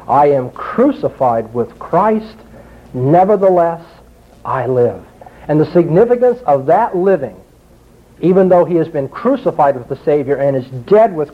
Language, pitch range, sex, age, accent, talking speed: English, 140-200 Hz, male, 50-69, American, 145 wpm